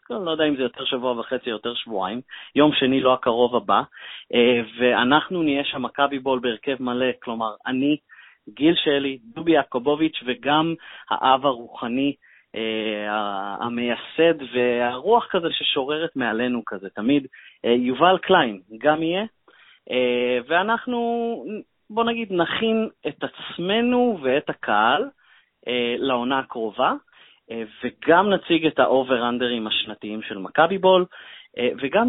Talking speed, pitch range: 115 wpm, 120-165 Hz